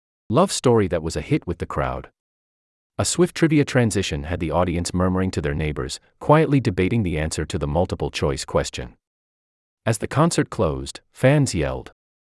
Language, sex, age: English, male, 40-59